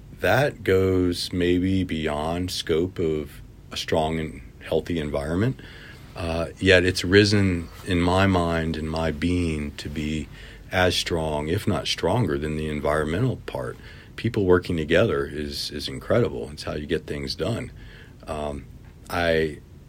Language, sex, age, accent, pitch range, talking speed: English, male, 40-59, American, 75-95 Hz, 140 wpm